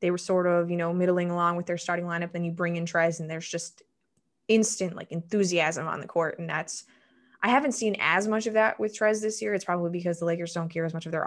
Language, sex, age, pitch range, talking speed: English, female, 20-39, 170-195 Hz, 265 wpm